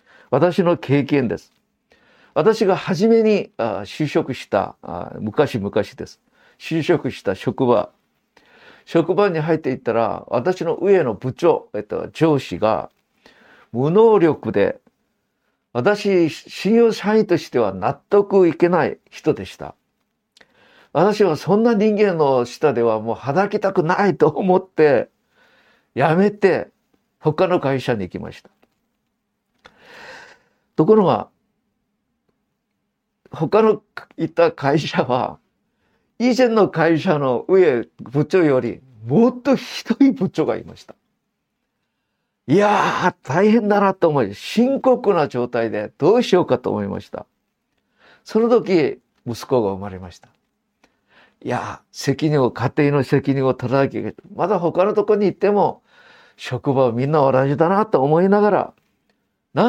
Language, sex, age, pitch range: Japanese, male, 50-69, 135-215 Hz